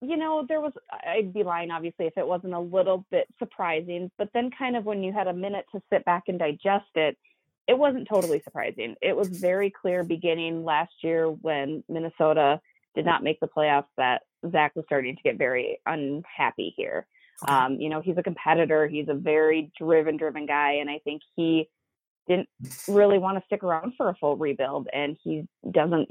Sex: female